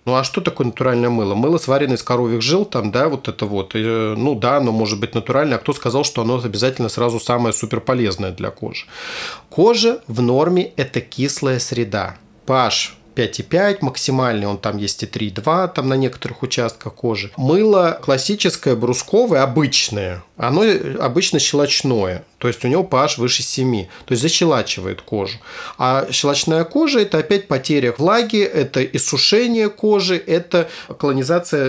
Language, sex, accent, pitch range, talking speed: Russian, male, native, 120-150 Hz, 160 wpm